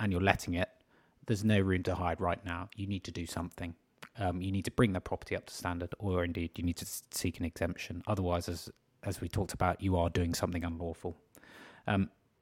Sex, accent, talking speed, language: male, British, 220 wpm, English